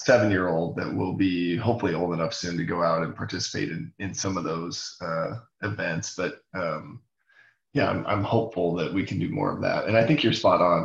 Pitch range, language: 90-115 Hz, English